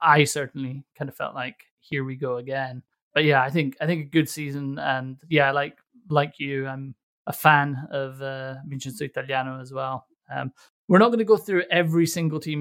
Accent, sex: British, male